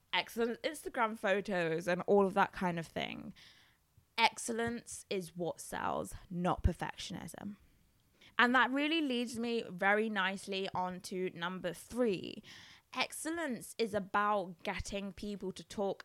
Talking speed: 125 wpm